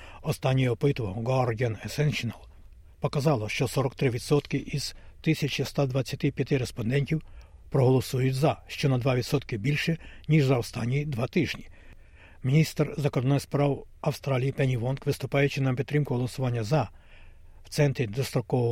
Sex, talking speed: male, 110 wpm